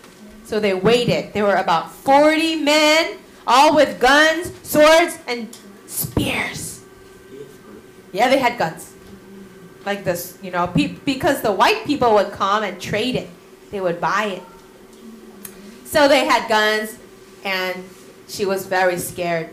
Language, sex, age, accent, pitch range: Korean, female, 20-39, American, 195-280 Hz